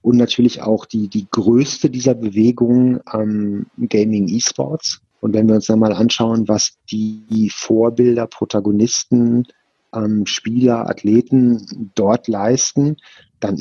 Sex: male